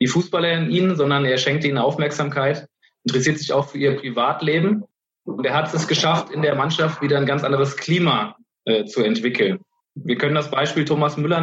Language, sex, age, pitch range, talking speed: Persian, male, 20-39, 140-170 Hz, 195 wpm